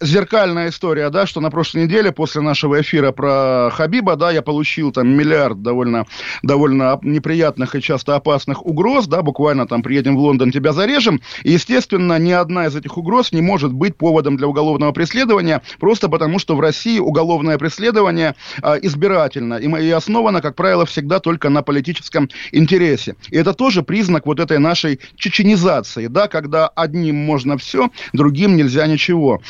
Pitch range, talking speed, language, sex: 145-175 Hz, 165 wpm, Russian, male